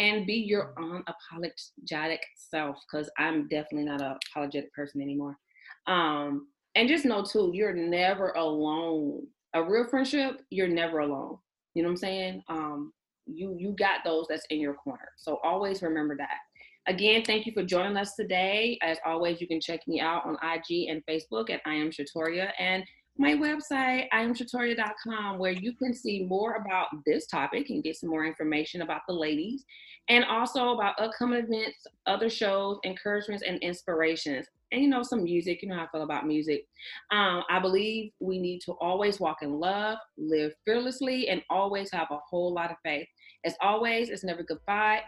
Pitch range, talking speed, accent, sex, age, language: 160-215 Hz, 180 wpm, American, female, 30-49, English